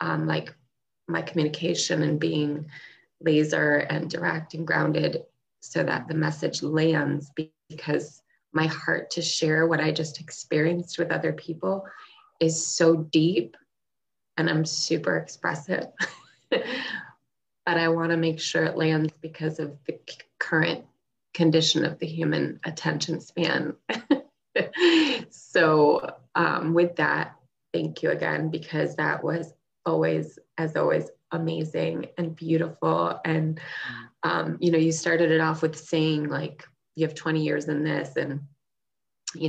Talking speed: 135 wpm